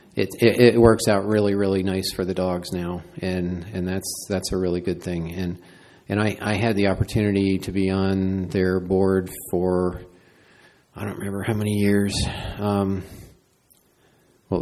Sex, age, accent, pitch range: male, 40-59, American, 95-105 Hz